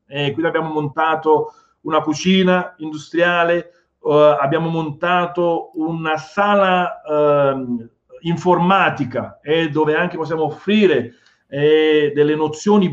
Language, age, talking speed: Italian, 40-59, 100 wpm